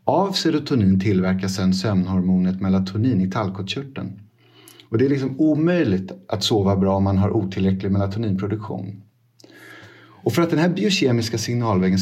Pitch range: 95-120 Hz